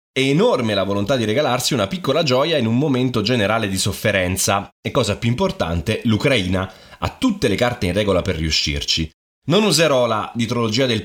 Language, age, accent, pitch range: Italian, 30-49, native, 95-125 Hz